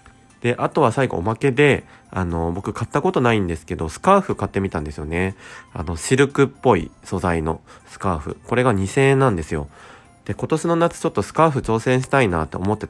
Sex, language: male, Japanese